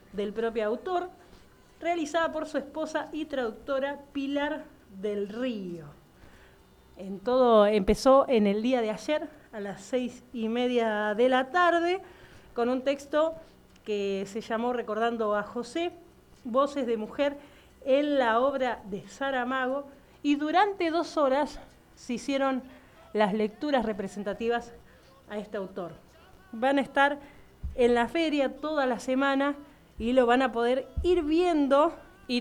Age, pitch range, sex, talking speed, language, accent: 40-59, 215-280 Hz, female, 135 wpm, Spanish, Argentinian